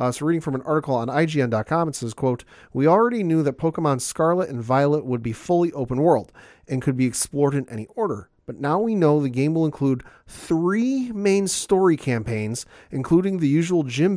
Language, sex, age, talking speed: English, male, 40-59, 200 wpm